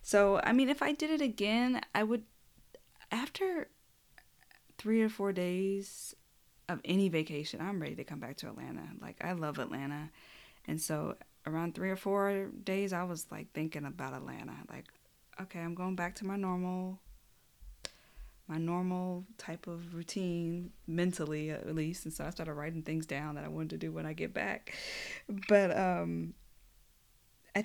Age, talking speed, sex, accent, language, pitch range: 20-39, 165 wpm, female, American, English, 155-190 Hz